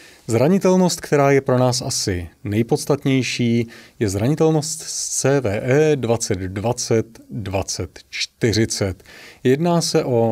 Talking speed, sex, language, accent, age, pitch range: 85 wpm, male, Czech, native, 30-49, 105-130 Hz